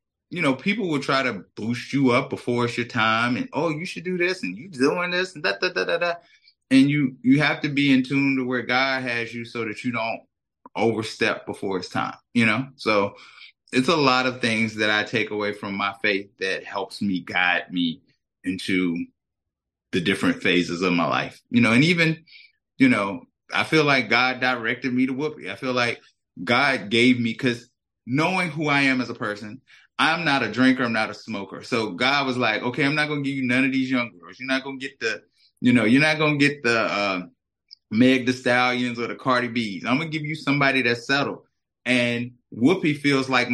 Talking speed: 225 wpm